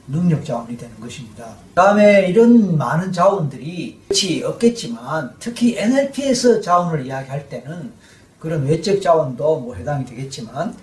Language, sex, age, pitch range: Korean, male, 40-59, 135-190 Hz